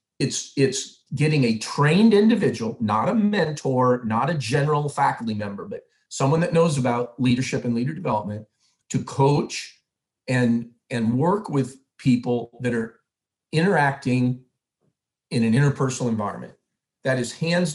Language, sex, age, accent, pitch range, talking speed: English, male, 40-59, American, 120-145 Hz, 135 wpm